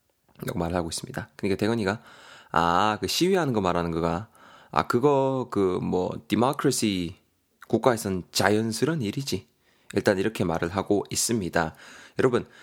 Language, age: Korean, 20-39